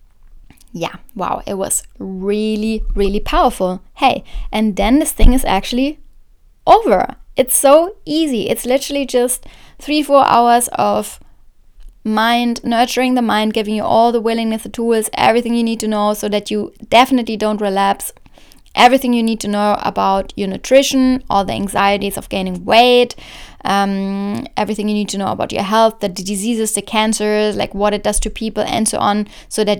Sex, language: female, English